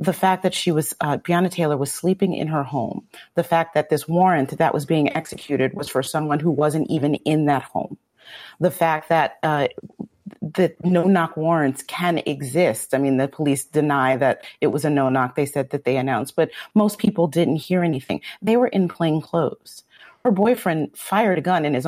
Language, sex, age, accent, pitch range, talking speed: English, female, 40-59, American, 140-180 Hz, 205 wpm